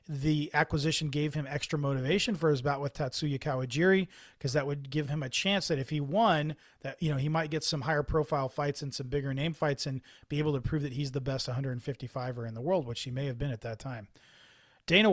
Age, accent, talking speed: 30-49, American, 240 wpm